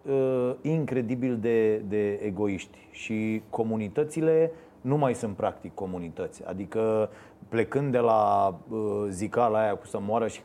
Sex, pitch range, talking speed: male, 115-160 Hz, 120 wpm